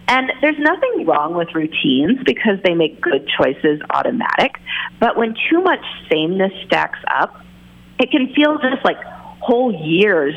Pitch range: 160-255 Hz